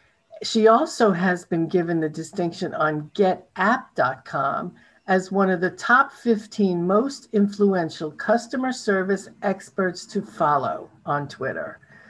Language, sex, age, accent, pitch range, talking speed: English, female, 50-69, American, 170-210 Hz, 120 wpm